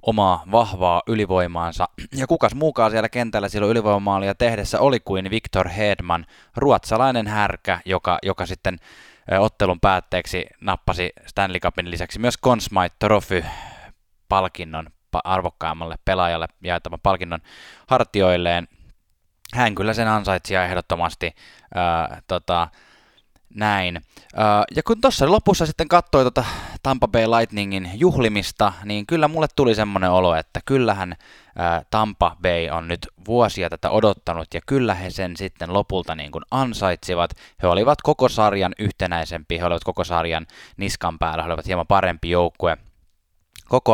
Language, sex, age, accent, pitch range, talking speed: Finnish, male, 20-39, native, 90-115 Hz, 130 wpm